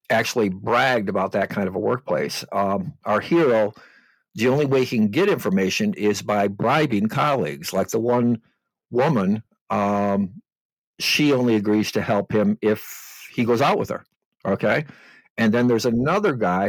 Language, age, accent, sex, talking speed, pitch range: English, 60-79, American, male, 160 wpm, 105-140 Hz